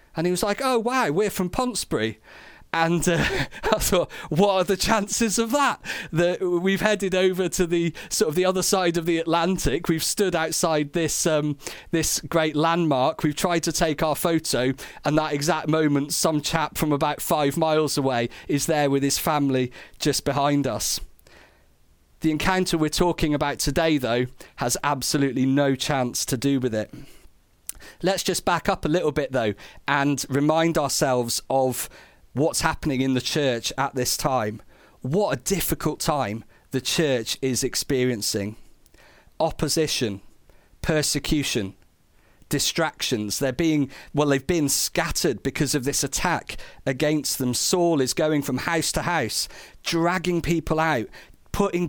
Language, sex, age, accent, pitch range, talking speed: English, male, 40-59, British, 135-170 Hz, 155 wpm